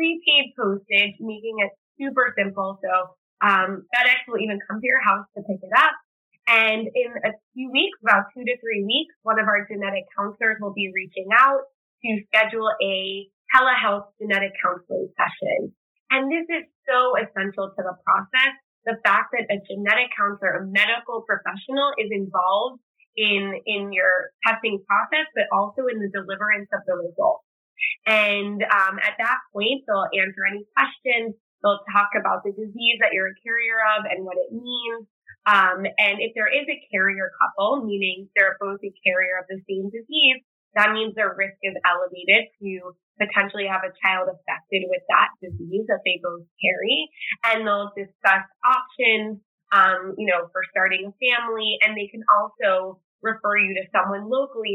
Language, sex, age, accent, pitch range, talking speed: English, female, 20-39, American, 195-230 Hz, 170 wpm